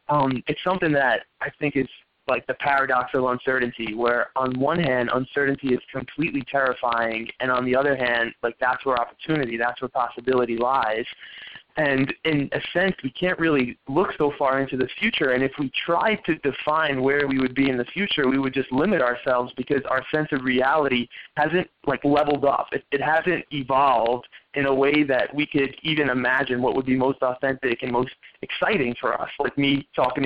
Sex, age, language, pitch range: male, 20-39, English, 130-150 Hz